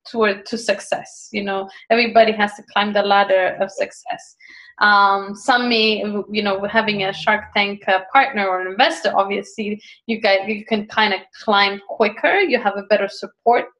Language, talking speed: English, 180 wpm